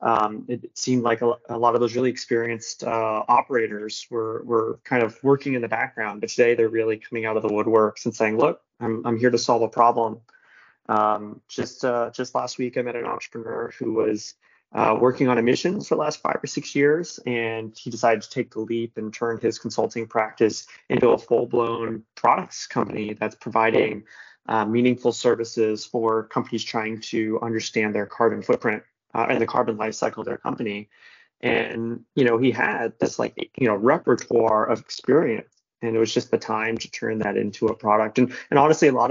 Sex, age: male, 20-39